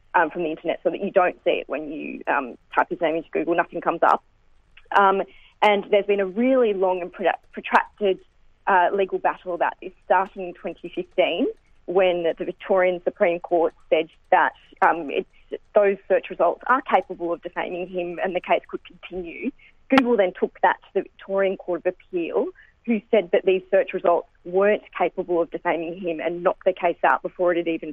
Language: English